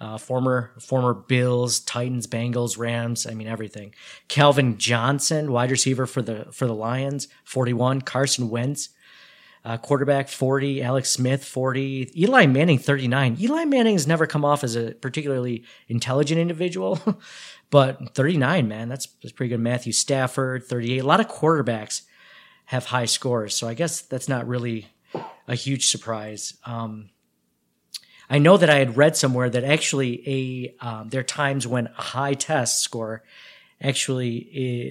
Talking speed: 155 wpm